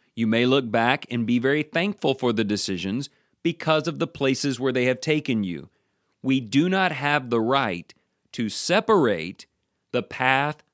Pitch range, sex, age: 115-145 Hz, male, 40-59